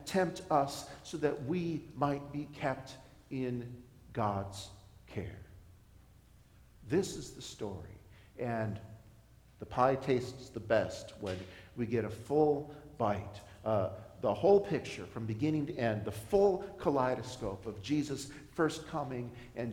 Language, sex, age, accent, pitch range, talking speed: English, male, 50-69, American, 120-155 Hz, 130 wpm